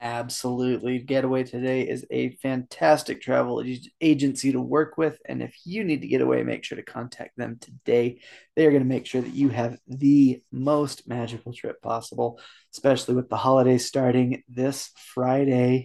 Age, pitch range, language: 20-39, 120-140 Hz, English